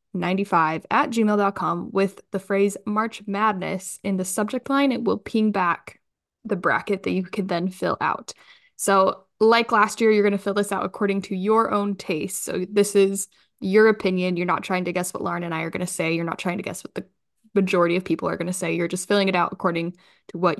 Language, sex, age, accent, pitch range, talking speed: English, female, 10-29, American, 185-215 Hz, 230 wpm